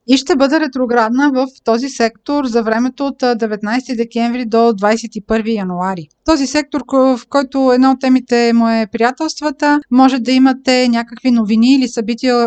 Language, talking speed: Bulgarian, 155 wpm